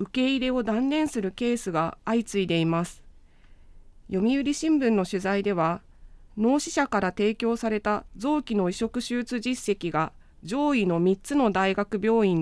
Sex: female